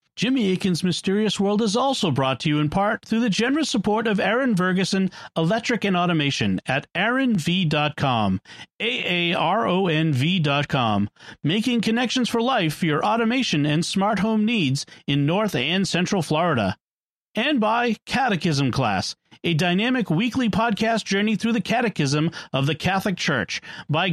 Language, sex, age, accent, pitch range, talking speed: English, male, 40-59, American, 155-225 Hz, 140 wpm